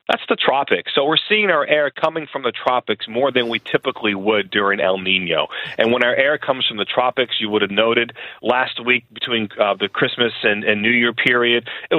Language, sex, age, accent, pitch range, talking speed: English, male, 40-59, American, 110-145 Hz, 220 wpm